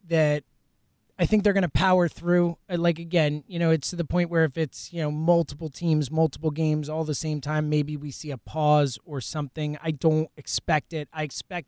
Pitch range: 145-185 Hz